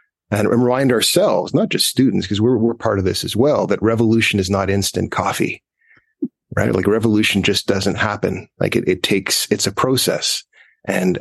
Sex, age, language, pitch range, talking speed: male, 30-49, English, 95-115 Hz, 180 wpm